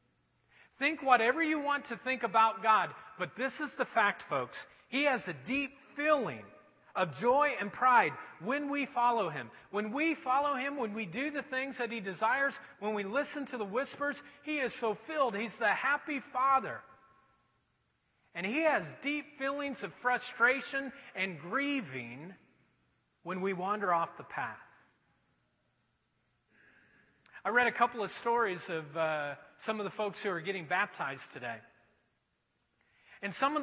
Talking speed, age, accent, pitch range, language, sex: 155 wpm, 40-59, American, 190-275 Hz, English, male